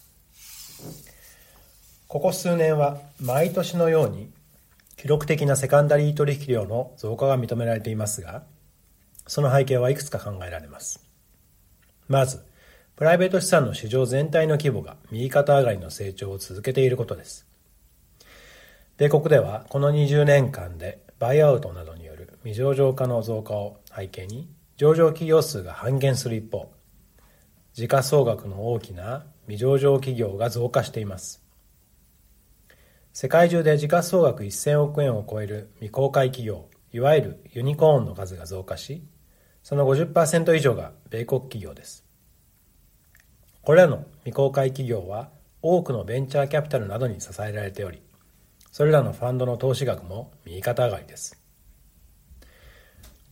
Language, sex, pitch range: Japanese, male, 100-145 Hz